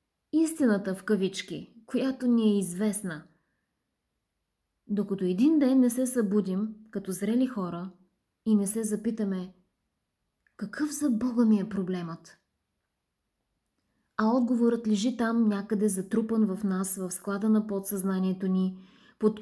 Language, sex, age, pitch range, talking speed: Bulgarian, female, 20-39, 195-235 Hz, 125 wpm